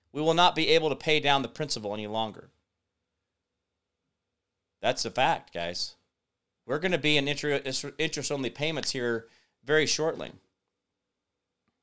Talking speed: 130 wpm